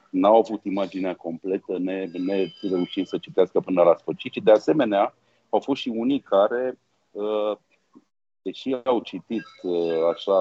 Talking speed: 140 wpm